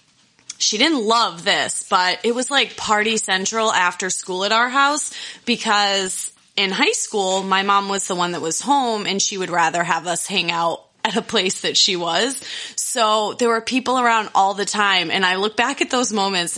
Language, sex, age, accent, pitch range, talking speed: English, female, 20-39, American, 185-230 Hz, 205 wpm